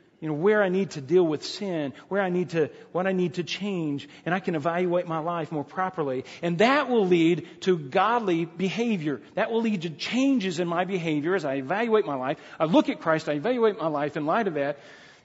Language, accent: English, American